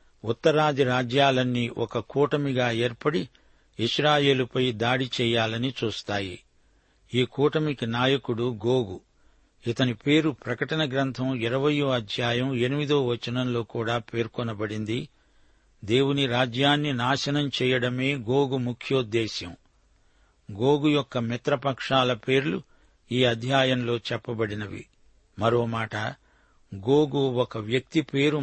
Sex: male